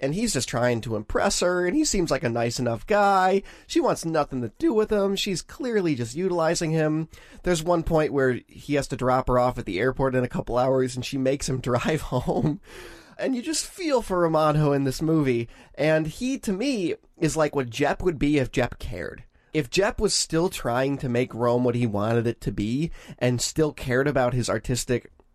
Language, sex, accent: English, male, American